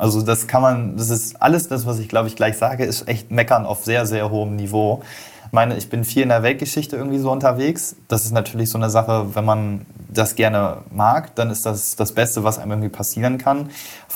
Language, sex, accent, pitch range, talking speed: German, male, German, 105-120 Hz, 235 wpm